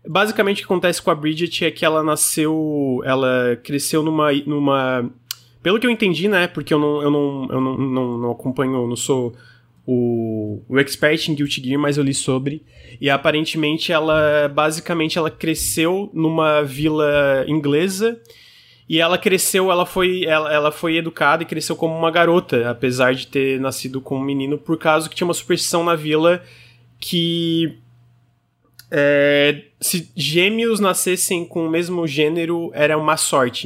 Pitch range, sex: 140-175 Hz, male